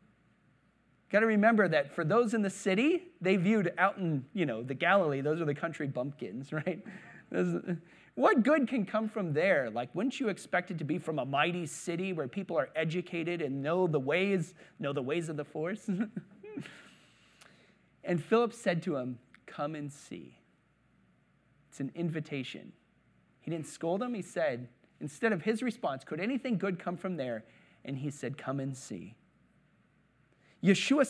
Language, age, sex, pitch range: English, 30-49, male, 145-215 Hz